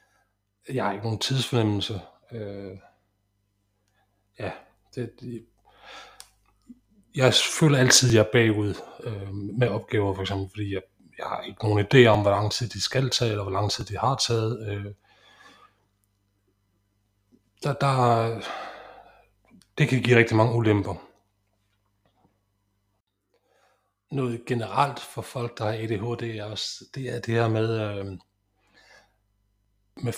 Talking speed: 125 wpm